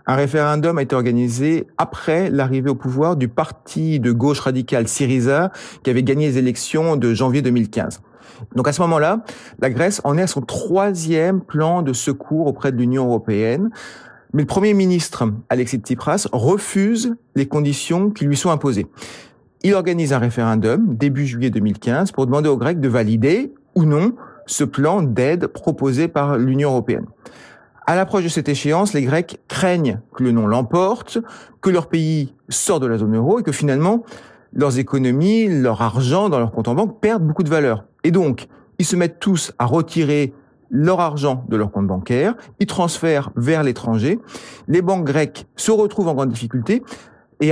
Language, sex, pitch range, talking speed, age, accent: French, male, 130-175 Hz, 175 wpm, 40-59, French